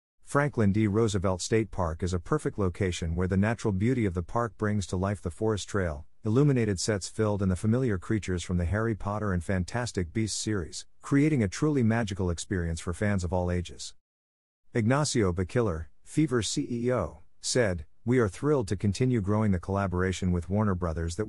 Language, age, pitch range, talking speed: English, 50-69, 90-115 Hz, 180 wpm